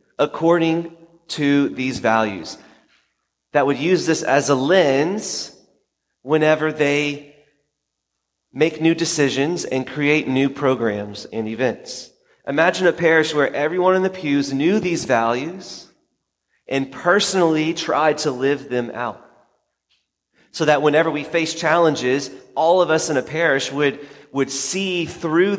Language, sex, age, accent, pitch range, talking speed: English, male, 30-49, American, 120-160 Hz, 130 wpm